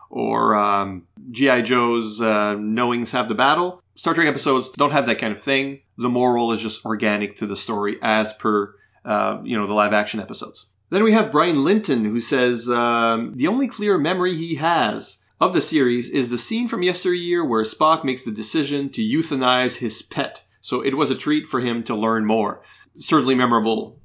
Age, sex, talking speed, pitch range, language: 30-49, male, 195 wpm, 115-160 Hz, English